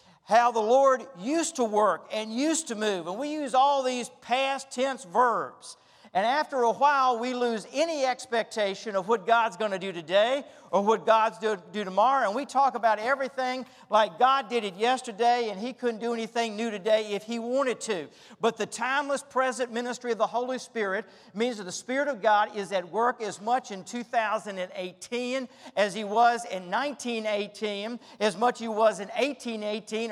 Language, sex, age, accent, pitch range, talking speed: English, male, 50-69, American, 185-255 Hz, 190 wpm